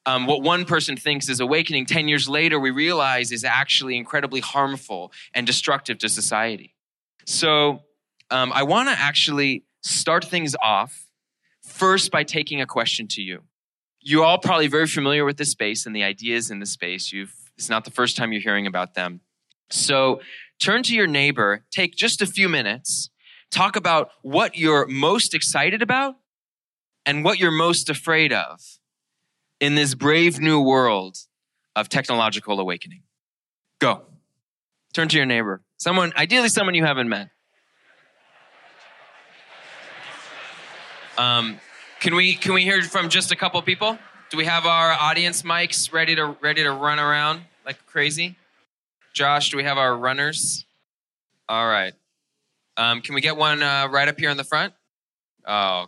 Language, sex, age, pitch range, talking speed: English, male, 20-39, 125-165 Hz, 160 wpm